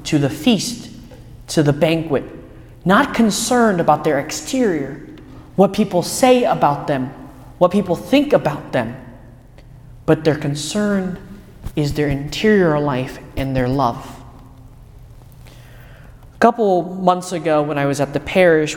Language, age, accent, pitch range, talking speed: English, 30-49, American, 135-175 Hz, 130 wpm